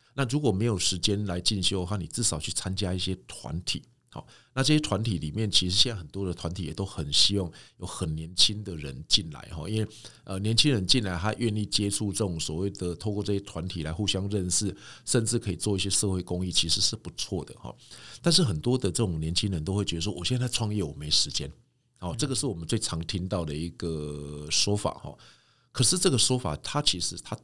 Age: 50-69